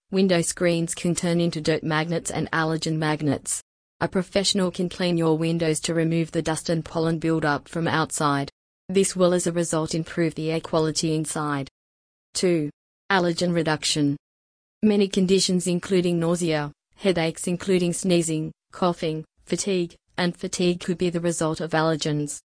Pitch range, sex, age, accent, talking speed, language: 160-180 Hz, female, 30-49, Australian, 145 wpm, English